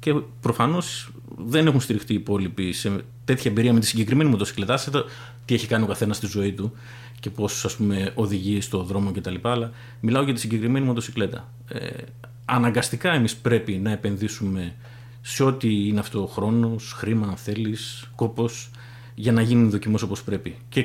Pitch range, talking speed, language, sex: 105-120 Hz, 160 wpm, Greek, male